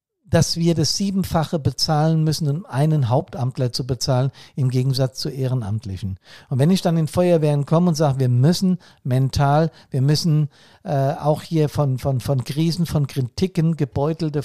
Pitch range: 130-160 Hz